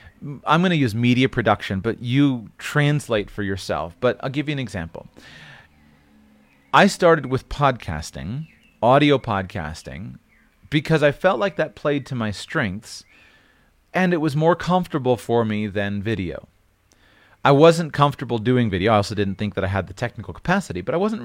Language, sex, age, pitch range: English, male, 30-49, 105-150 Hz